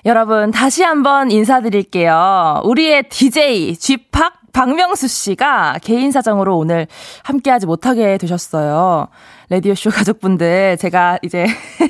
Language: Korean